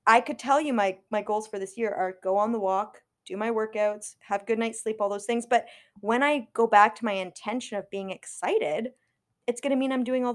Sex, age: female, 20-39